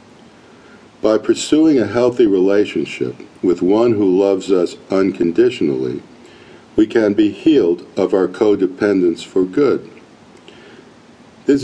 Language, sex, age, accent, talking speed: English, male, 50-69, American, 110 wpm